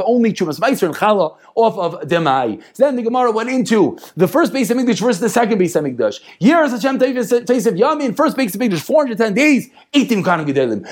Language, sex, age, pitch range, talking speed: English, male, 30-49, 210-265 Hz, 225 wpm